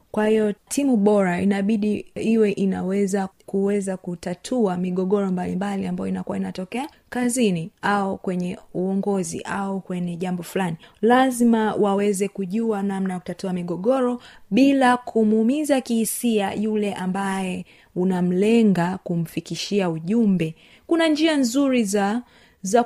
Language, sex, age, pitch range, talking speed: Swahili, female, 20-39, 190-235 Hz, 110 wpm